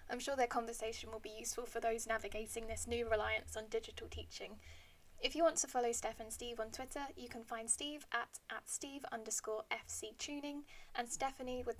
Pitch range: 230-265 Hz